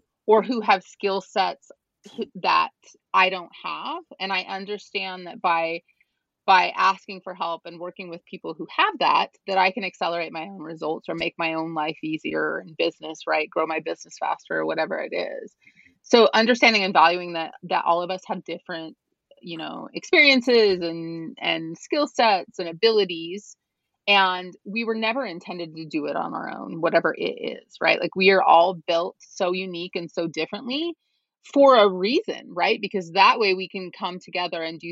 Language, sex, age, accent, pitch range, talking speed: English, female, 30-49, American, 165-230 Hz, 185 wpm